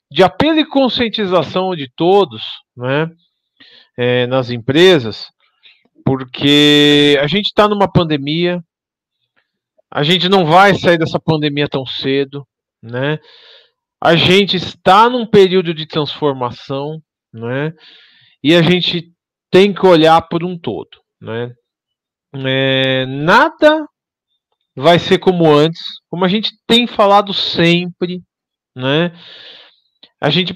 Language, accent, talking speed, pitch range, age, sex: Portuguese, Brazilian, 110 wpm, 130-180 Hz, 40-59, male